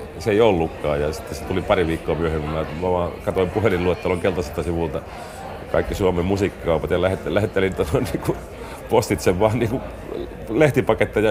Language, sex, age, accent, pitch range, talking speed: Finnish, male, 40-59, native, 80-95 Hz, 160 wpm